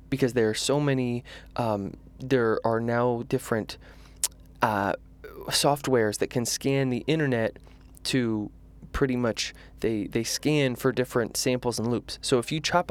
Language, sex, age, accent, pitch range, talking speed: English, male, 20-39, American, 115-135 Hz, 150 wpm